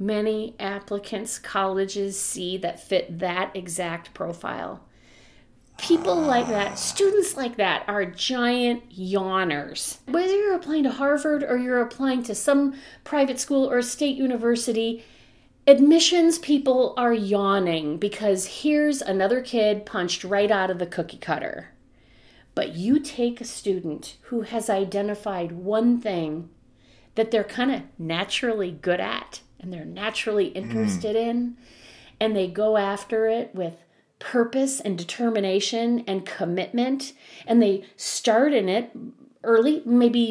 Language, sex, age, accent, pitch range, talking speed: English, female, 40-59, American, 195-250 Hz, 130 wpm